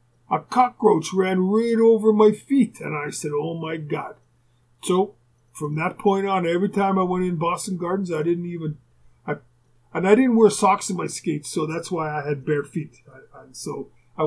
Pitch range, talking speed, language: 150-190 Hz, 195 wpm, English